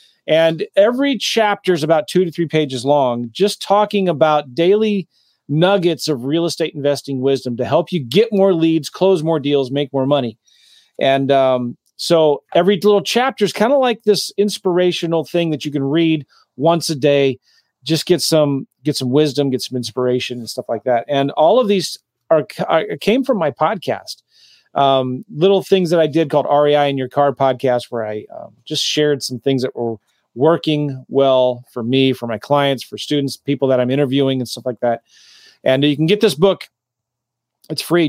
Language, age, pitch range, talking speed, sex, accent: English, 40-59, 135-190 Hz, 190 wpm, male, American